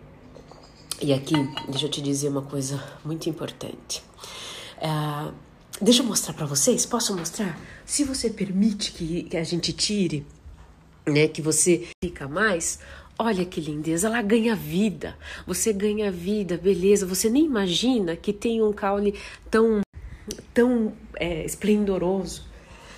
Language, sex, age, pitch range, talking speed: Portuguese, female, 50-69, 160-195 Hz, 135 wpm